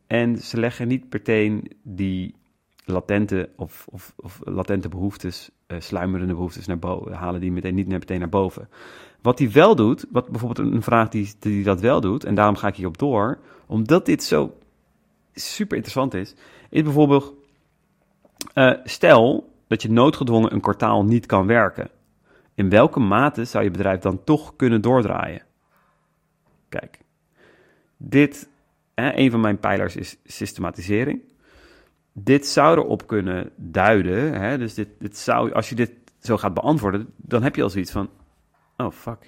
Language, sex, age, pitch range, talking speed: Dutch, male, 30-49, 95-120 Hz, 160 wpm